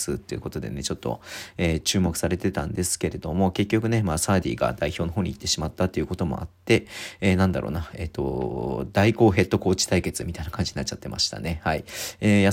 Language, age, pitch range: Japanese, 40-59, 90-115 Hz